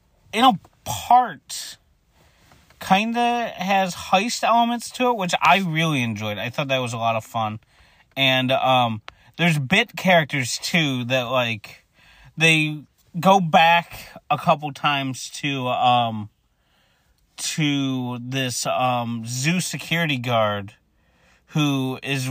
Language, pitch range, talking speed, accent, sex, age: English, 115-150 Hz, 125 wpm, American, male, 30-49